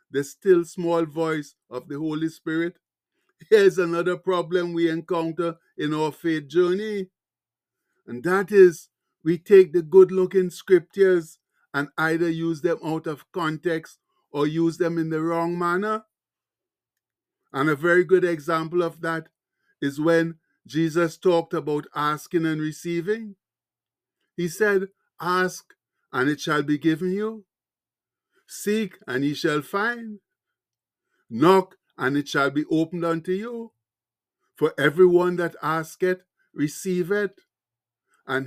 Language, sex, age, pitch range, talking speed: English, male, 60-79, 150-185 Hz, 130 wpm